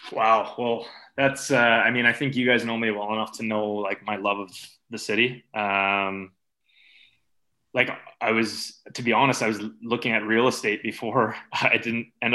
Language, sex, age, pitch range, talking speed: English, male, 20-39, 100-115 Hz, 190 wpm